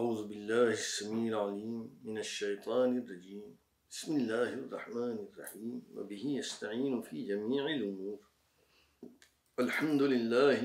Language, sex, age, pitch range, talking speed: English, male, 60-79, 105-140 Hz, 100 wpm